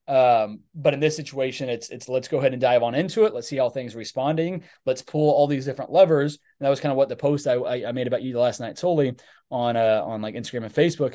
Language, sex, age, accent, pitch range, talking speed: English, male, 20-39, American, 120-150 Hz, 265 wpm